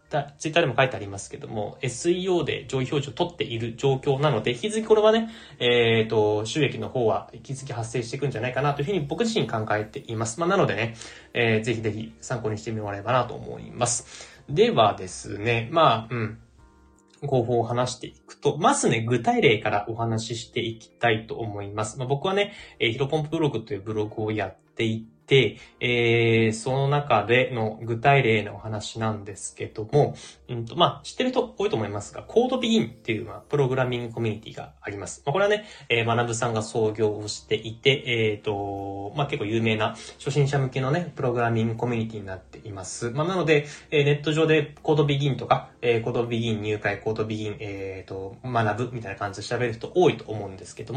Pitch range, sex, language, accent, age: 110-145 Hz, male, Japanese, native, 20-39